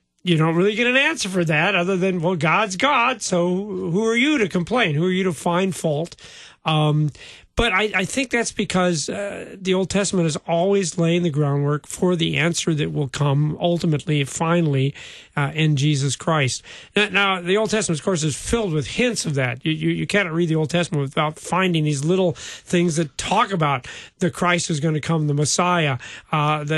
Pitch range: 150-185 Hz